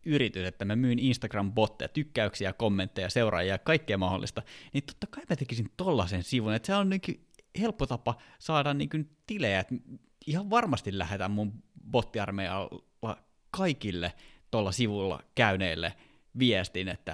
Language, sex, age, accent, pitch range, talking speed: Finnish, male, 20-39, native, 100-145 Hz, 130 wpm